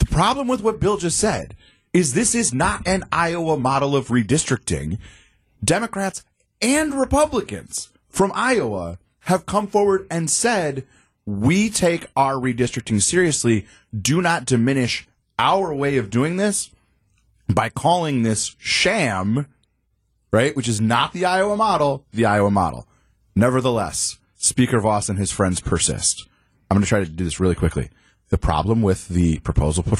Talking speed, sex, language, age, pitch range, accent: 150 wpm, male, English, 30-49, 95-135 Hz, American